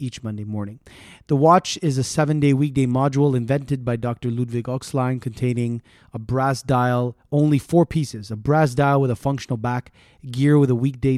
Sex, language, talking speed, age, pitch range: male, English, 175 wpm, 30-49, 120-145 Hz